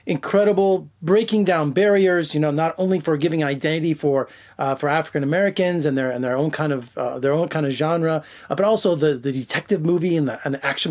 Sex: male